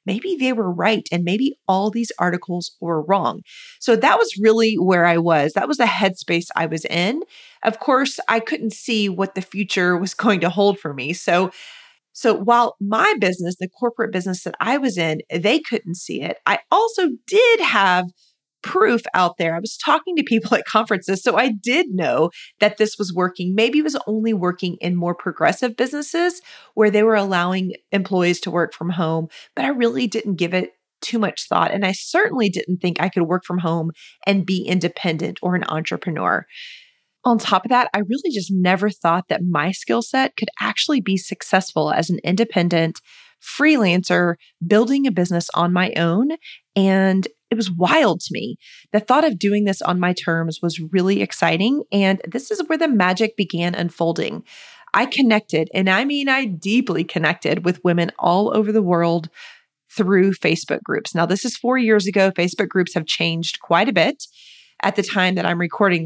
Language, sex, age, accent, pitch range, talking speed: English, female, 30-49, American, 180-240 Hz, 190 wpm